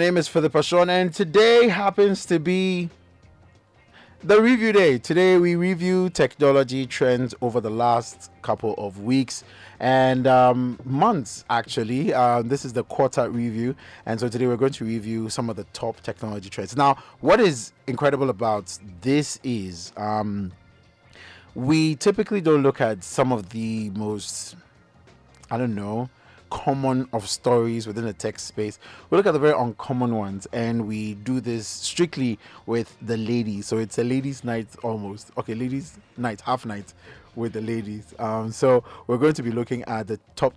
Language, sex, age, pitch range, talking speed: English, male, 30-49, 105-130 Hz, 165 wpm